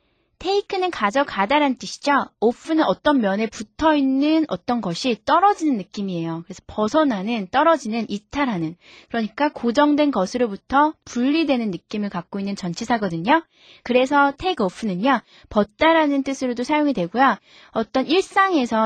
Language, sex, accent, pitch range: Korean, female, native, 210-305 Hz